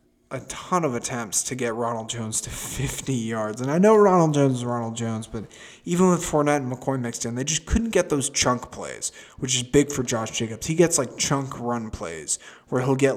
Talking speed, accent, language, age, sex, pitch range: 225 wpm, American, English, 20-39, male, 115-145 Hz